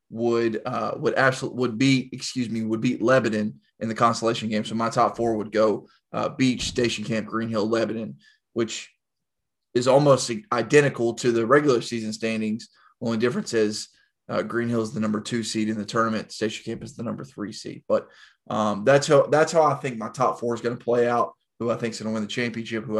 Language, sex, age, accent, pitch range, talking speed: English, male, 20-39, American, 110-125 Hz, 215 wpm